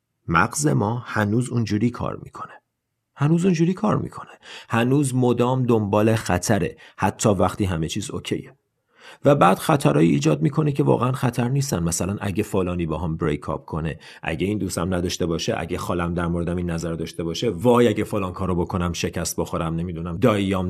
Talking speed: 170 wpm